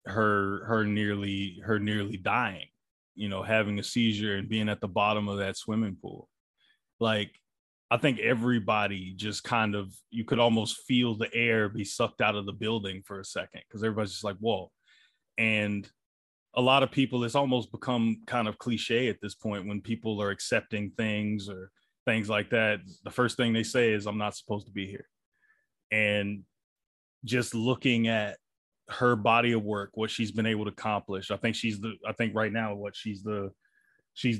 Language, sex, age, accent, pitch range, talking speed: English, male, 20-39, American, 105-120 Hz, 190 wpm